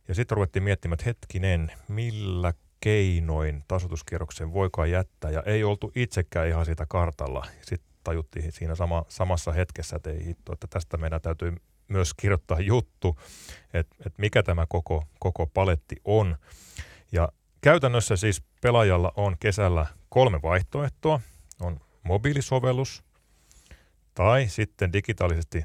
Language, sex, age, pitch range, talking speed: Finnish, male, 30-49, 85-110 Hz, 130 wpm